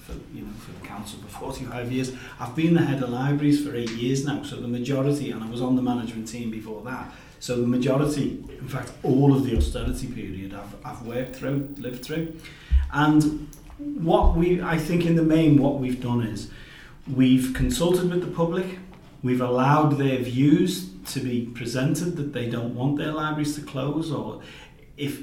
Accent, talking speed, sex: British, 190 wpm, male